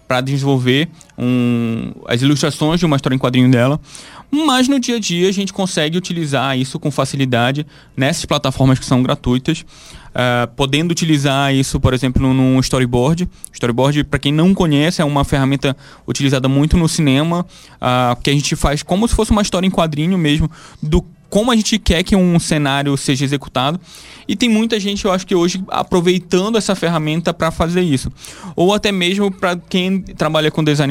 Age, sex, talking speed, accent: 20-39, male, 175 wpm, Brazilian